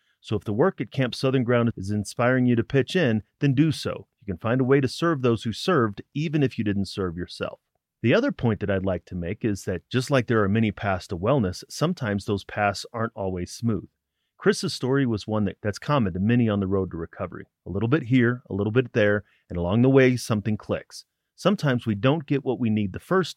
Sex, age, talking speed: male, 30-49, 240 wpm